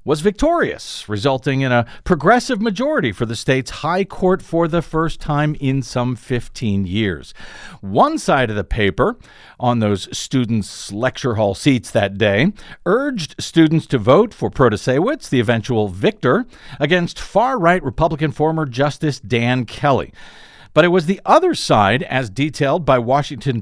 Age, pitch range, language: 50-69, 120-175 Hz, English